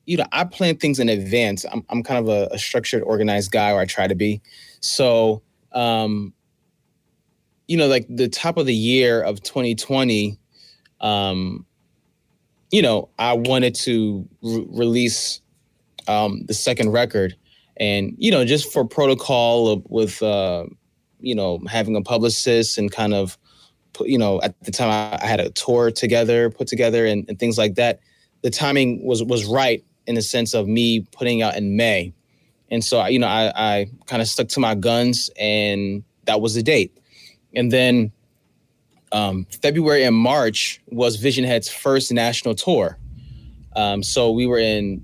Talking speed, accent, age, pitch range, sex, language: 170 wpm, American, 20-39, 105-125 Hz, male, English